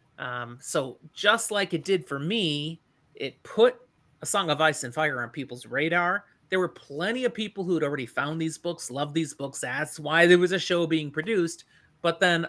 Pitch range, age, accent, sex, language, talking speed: 140-185 Hz, 30-49, American, male, English, 205 wpm